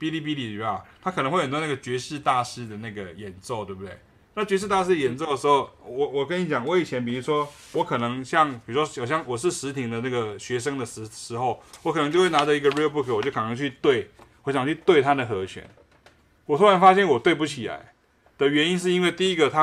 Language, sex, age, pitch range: Chinese, male, 20-39, 125-185 Hz